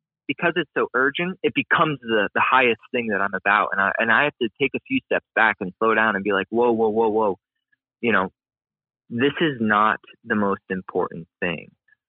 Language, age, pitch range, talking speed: English, 20-39, 110-150 Hz, 215 wpm